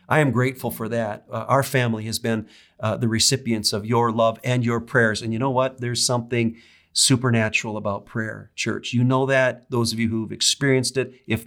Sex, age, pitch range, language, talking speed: male, 50-69, 110-130 Hz, English, 205 wpm